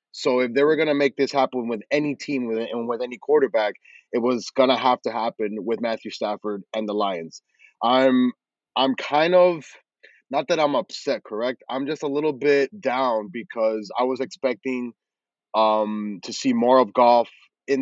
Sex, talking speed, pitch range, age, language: male, 190 wpm, 120-140 Hz, 20-39, English